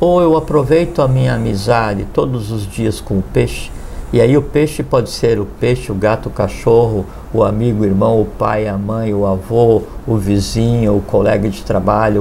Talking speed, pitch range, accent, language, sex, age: 195 wpm, 105-140 Hz, Brazilian, Portuguese, male, 50-69